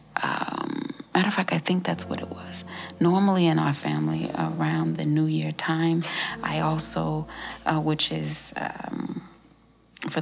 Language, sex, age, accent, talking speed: English, female, 30-49, American, 155 wpm